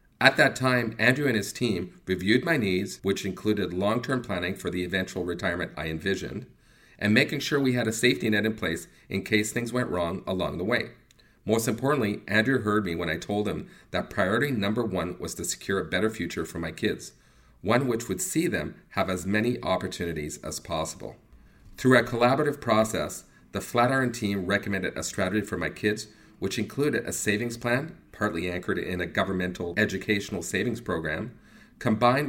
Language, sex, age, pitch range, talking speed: English, male, 40-59, 95-120 Hz, 180 wpm